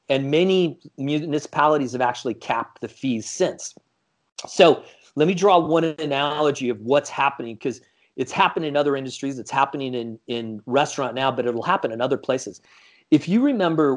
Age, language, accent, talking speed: 40-59, English, American, 170 wpm